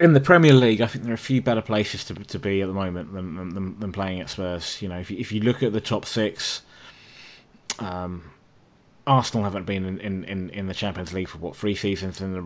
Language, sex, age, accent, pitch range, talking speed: English, male, 20-39, British, 95-120 Hz, 250 wpm